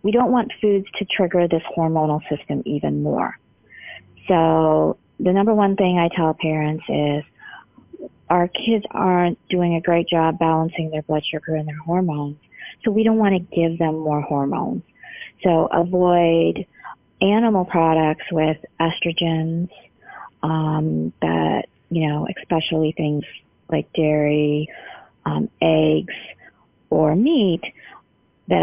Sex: female